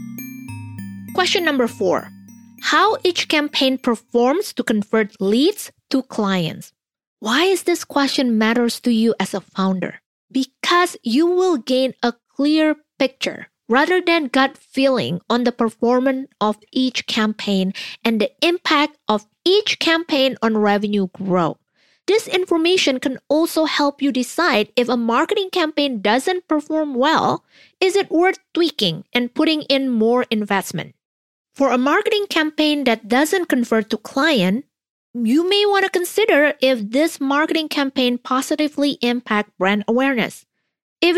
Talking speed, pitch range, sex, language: 135 wpm, 225-315 Hz, female, English